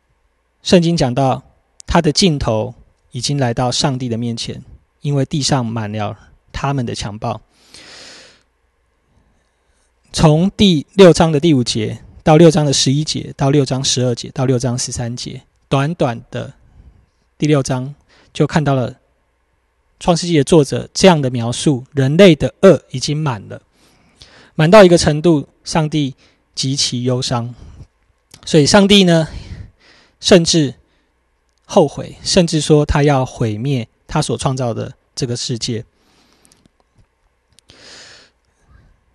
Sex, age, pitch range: male, 20-39, 120-155 Hz